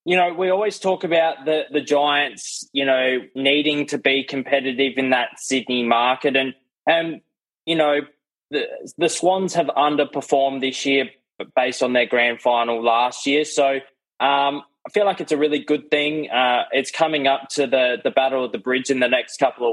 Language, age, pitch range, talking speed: English, 20-39, 125-150 Hz, 190 wpm